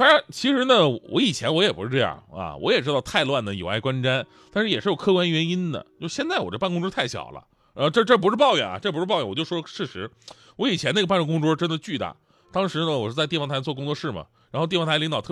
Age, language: 30-49, Chinese